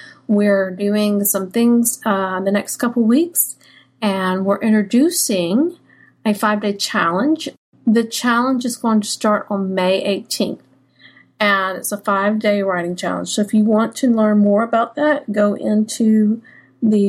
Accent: American